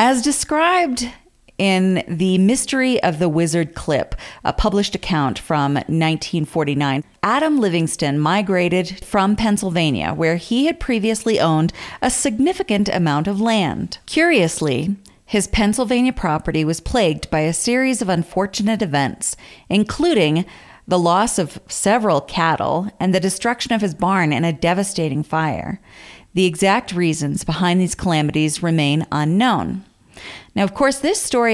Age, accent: 40-59, American